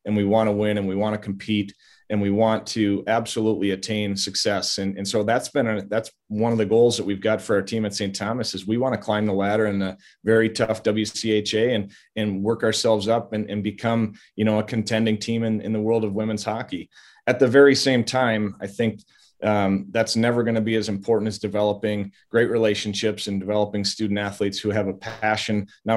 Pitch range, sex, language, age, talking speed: 100-115 Hz, male, English, 30-49, 225 wpm